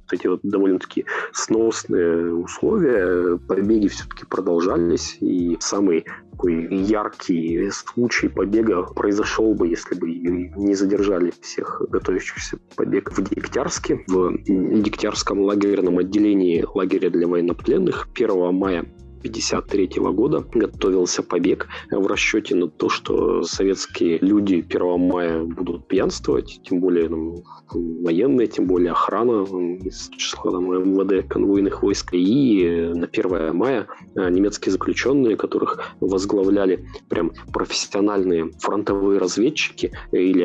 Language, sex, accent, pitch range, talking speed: Russian, male, native, 85-100 Hz, 105 wpm